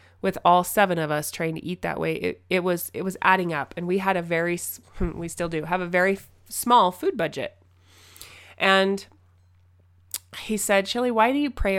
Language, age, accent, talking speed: English, 20-39, American, 200 wpm